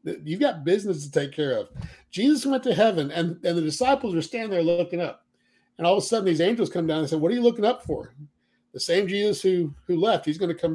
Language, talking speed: English, 260 wpm